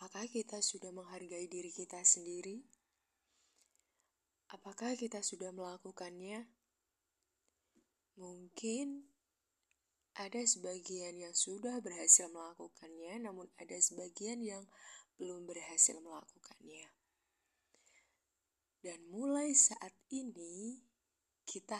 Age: 20-39